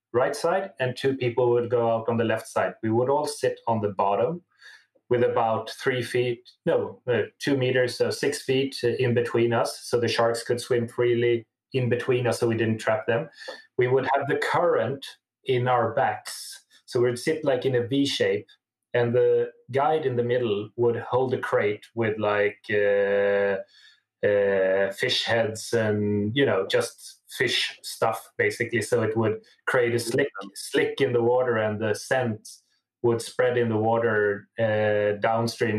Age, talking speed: 30-49, 180 wpm